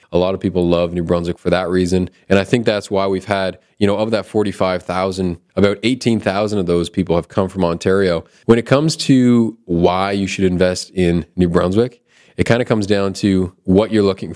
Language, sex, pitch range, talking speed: English, male, 90-105 Hz, 215 wpm